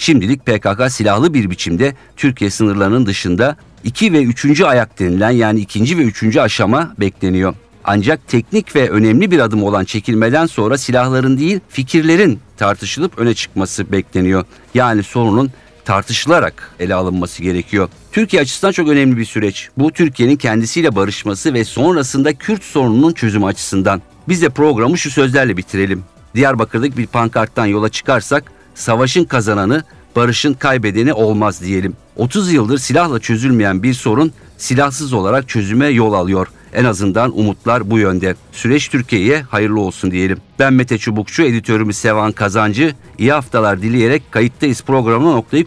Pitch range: 100-135 Hz